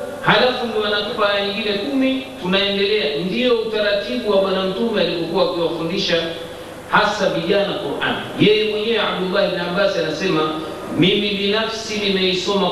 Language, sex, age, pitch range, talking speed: Swahili, male, 50-69, 195-250 Hz, 120 wpm